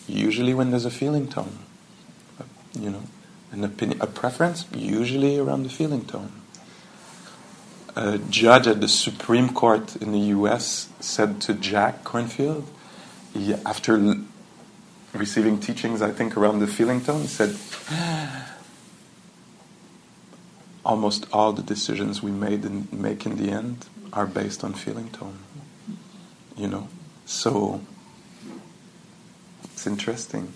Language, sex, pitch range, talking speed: English, male, 105-150 Hz, 120 wpm